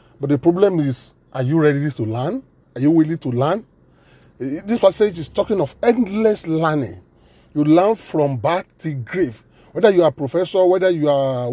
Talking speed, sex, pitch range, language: 180 wpm, male, 125-165 Hz, English